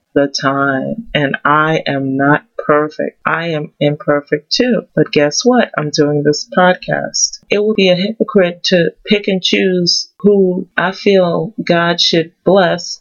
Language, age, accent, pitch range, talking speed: English, 30-49, American, 150-180 Hz, 150 wpm